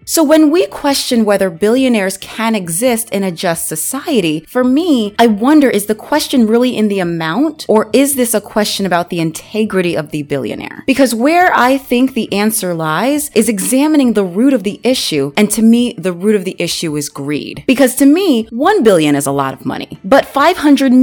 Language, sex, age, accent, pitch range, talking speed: English, female, 30-49, American, 190-275 Hz, 195 wpm